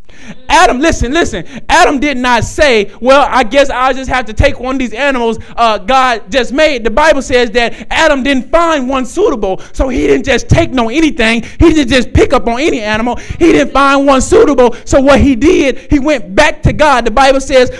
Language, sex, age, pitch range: English, male, 20-39, 245-295 Hz